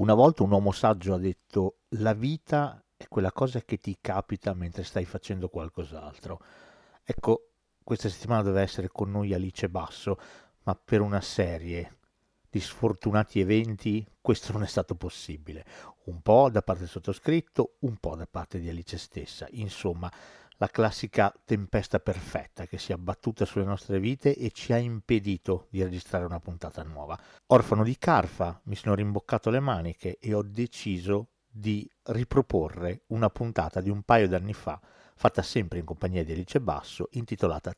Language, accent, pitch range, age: Italian, native, 90-115 Hz, 50-69